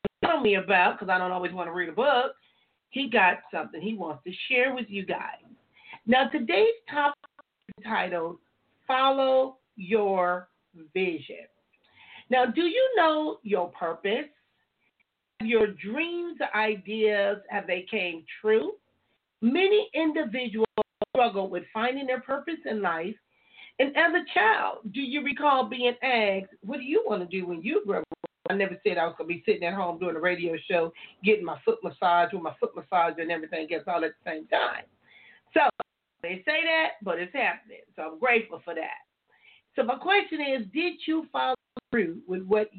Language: English